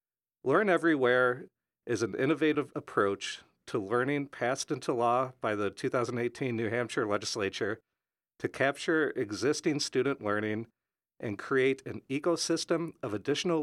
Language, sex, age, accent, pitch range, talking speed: English, male, 50-69, American, 115-150 Hz, 125 wpm